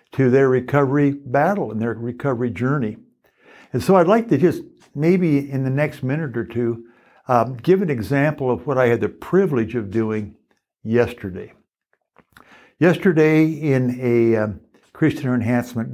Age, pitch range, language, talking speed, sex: 60-79, 120-150 Hz, English, 150 wpm, male